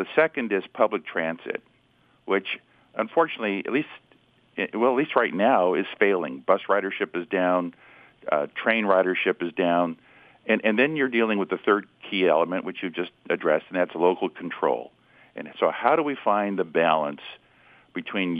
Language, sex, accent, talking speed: English, male, American, 170 wpm